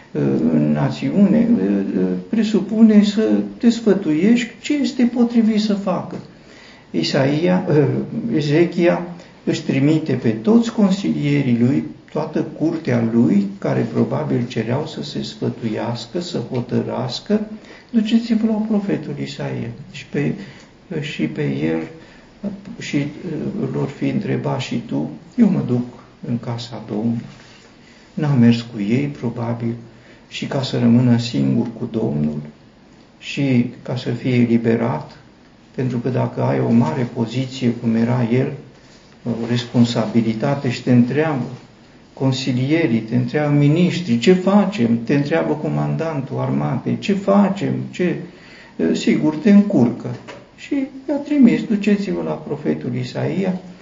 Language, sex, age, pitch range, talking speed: Romanian, male, 50-69, 115-185 Hz, 120 wpm